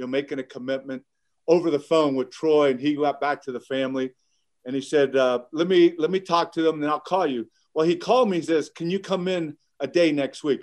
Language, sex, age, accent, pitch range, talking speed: English, male, 50-69, American, 130-160 Hz, 260 wpm